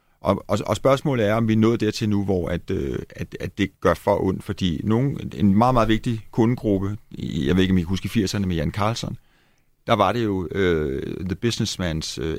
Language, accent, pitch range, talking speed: Danish, native, 90-115 Hz, 210 wpm